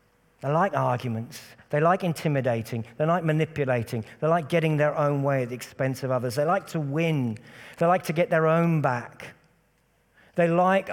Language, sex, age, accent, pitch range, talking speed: English, male, 50-69, British, 115-135 Hz, 180 wpm